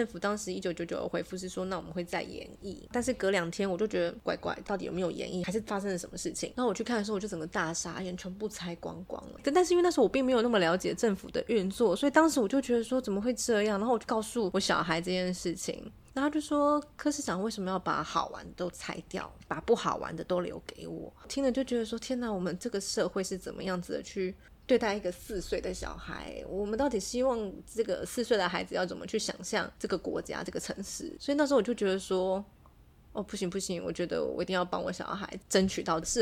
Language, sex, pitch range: Chinese, female, 180-240 Hz